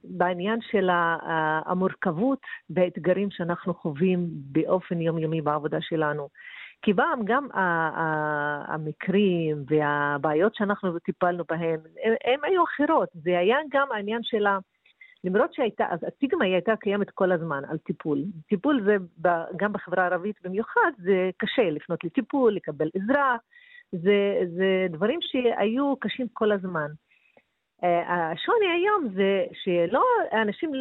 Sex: female